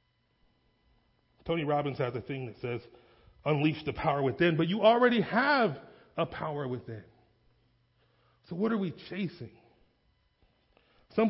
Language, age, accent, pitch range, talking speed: English, 30-49, American, 120-170 Hz, 125 wpm